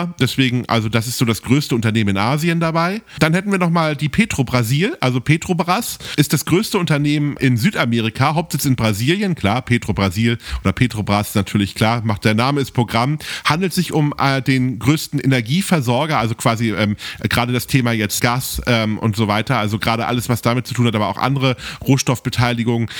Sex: male